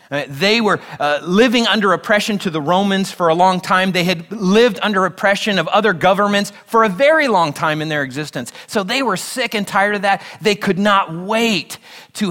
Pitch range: 165-205 Hz